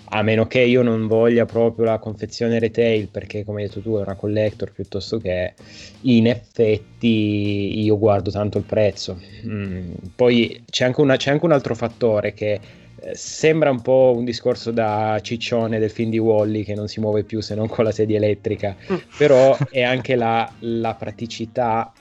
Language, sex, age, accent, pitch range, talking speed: Italian, male, 20-39, native, 105-120 Hz, 180 wpm